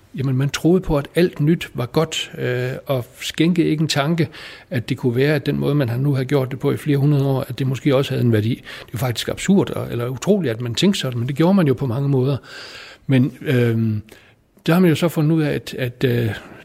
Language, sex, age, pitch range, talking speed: Danish, male, 60-79, 120-150 Hz, 255 wpm